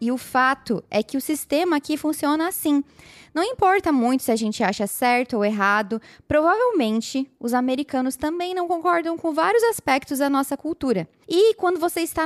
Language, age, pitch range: Portuguese, 10-29, 230-315 Hz